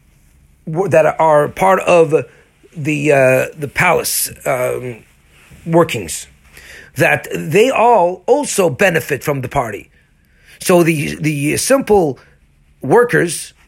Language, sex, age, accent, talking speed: English, male, 40-59, American, 100 wpm